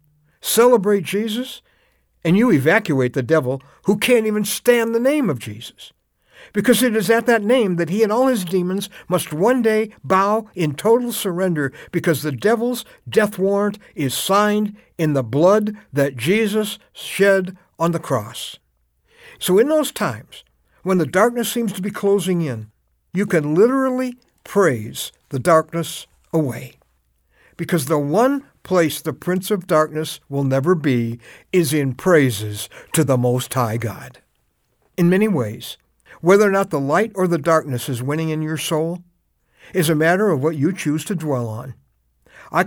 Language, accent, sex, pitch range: English, American, male, 140-215 Hz